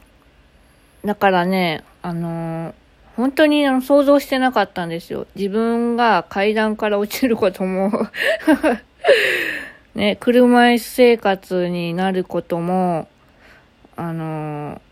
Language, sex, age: Japanese, female, 20-39